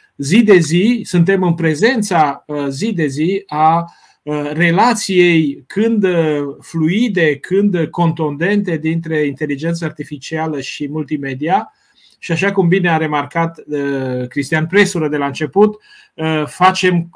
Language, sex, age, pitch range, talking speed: Romanian, male, 30-49, 145-180 Hz, 110 wpm